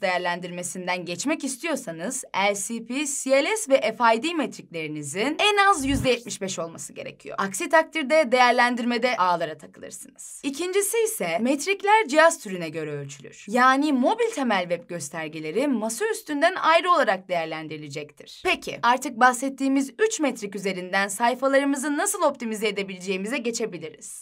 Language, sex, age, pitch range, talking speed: Turkish, female, 10-29, 185-290 Hz, 115 wpm